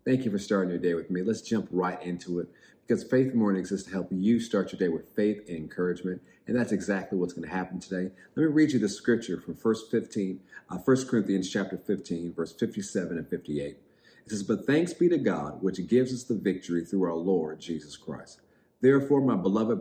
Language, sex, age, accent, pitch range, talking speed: English, male, 40-59, American, 90-105 Hz, 215 wpm